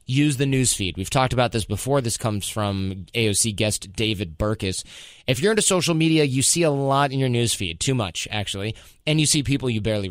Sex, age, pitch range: male, 30-49, 105-140 Hz